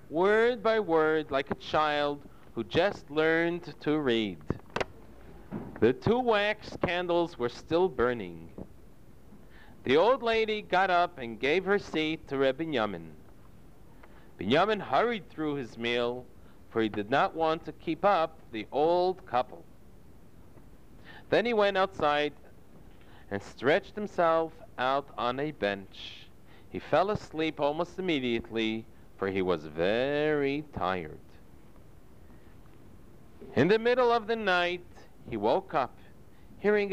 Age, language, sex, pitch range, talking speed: 50-69, English, male, 120-185 Hz, 125 wpm